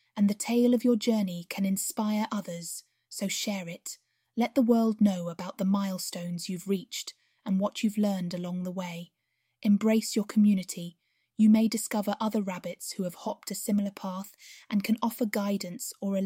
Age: 20-39